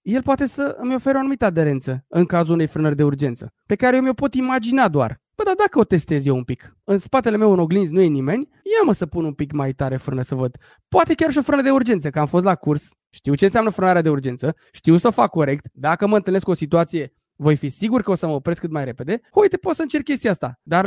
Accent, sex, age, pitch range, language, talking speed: native, male, 20-39, 155-230 Hz, Romanian, 275 wpm